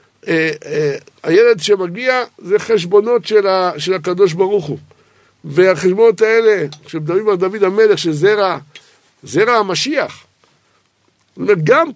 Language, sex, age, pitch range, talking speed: Hebrew, male, 60-79, 170-240 Hz, 110 wpm